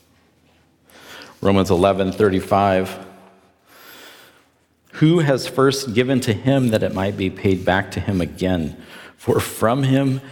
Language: English